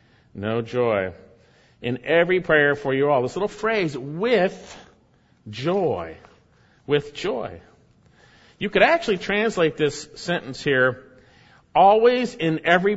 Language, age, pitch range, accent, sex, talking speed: English, 40-59, 130-200 Hz, American, male, 115 wpm